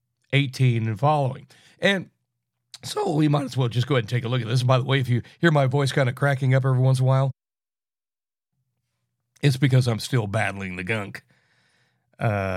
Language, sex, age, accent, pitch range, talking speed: English, male, 60-79, American, 120-155 Hz, 210 wpm